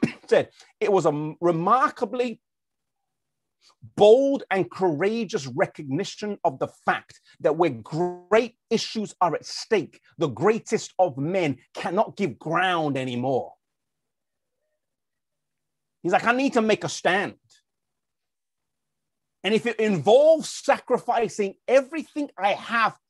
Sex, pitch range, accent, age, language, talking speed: male, 185-250 Hz, British, 30-49, English, 110 wpm